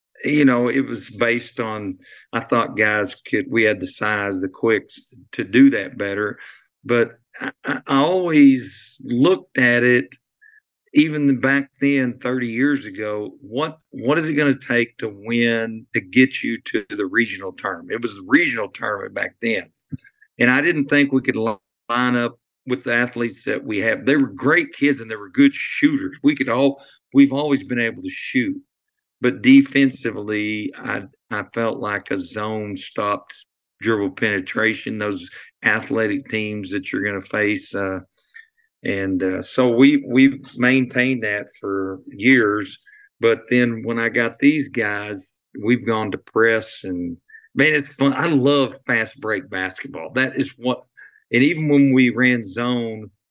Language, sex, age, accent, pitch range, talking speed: English, male, 50-69, American, 110-140 Hz, 165 wpm